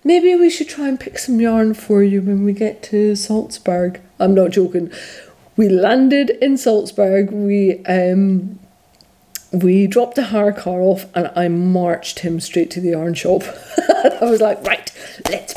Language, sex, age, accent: English, female, 40-59, British